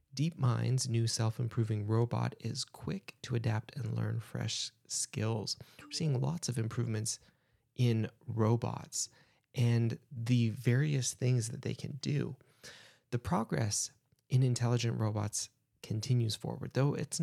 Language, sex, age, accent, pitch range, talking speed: English, male, 30-49, American, 115-135 Hz, 125 wpm